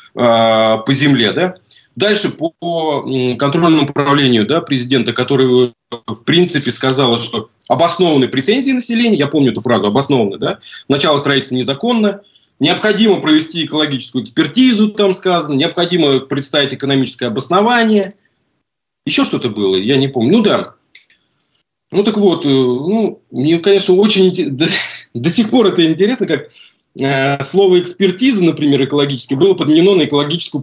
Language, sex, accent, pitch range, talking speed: Russian, male, native, 135-185 Hz, 125 wpm